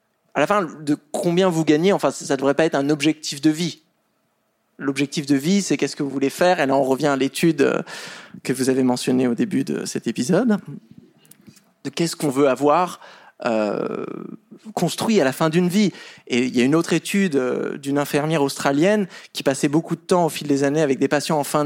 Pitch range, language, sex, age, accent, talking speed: 150-190 Hz, French, male, 20-39, French, 215 wpm